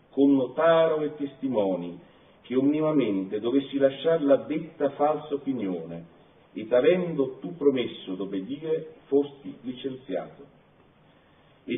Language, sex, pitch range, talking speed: Italian, male, 120-150 Hz, 105 wpm